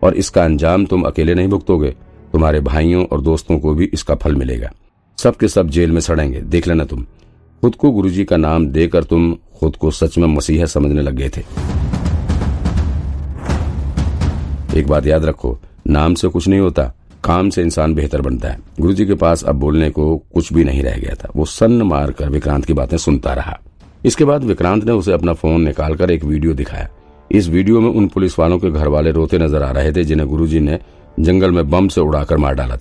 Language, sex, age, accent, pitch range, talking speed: Hindi, male, 50-69, native, 75-90 Hz, 170 wpm